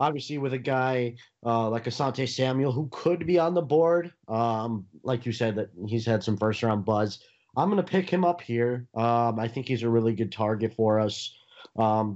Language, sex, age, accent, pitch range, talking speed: English, male, 30-49, American, 105-130 Hz, 200 wpm